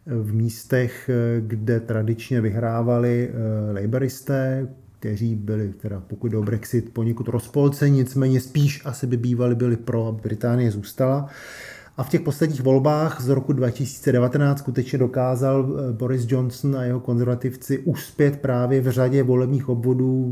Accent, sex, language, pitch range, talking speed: native, male, Czech, 115-130 Hz, 135 wpm